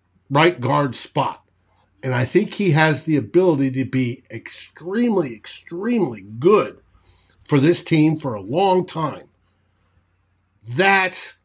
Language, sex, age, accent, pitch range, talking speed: English, male, 50-69, American, 105-165 Hz, 120 wpm